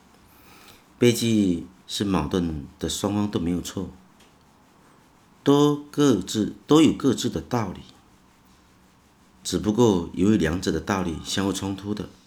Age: 50-69